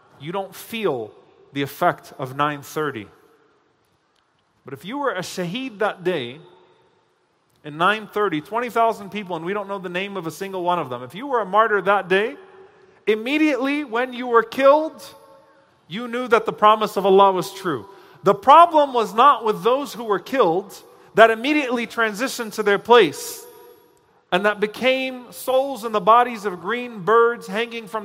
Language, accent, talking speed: English, American, 170 wpm